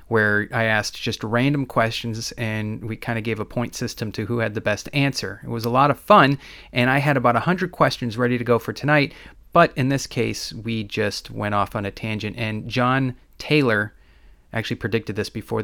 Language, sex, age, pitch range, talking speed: English, male, 30-49, 110-140 Hz, 210 wpm